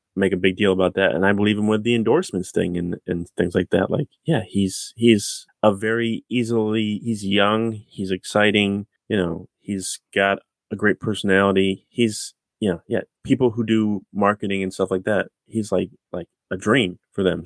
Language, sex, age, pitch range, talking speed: English, male, 20-39, 95-110 Hz, 195 wpm